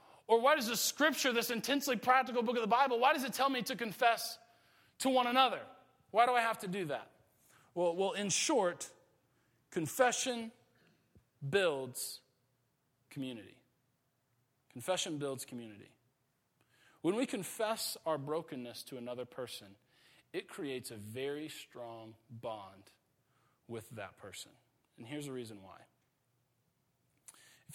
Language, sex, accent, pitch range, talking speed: English, male, American, 115-155 Hz, 135 wpm